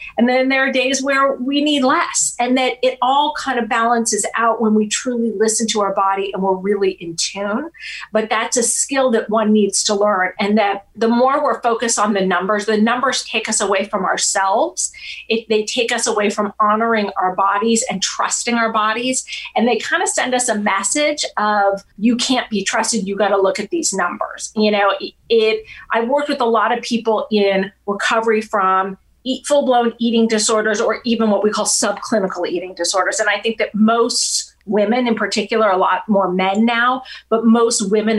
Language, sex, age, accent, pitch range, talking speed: English, female, 40-59, American, 200-235 Hz, 200 wpm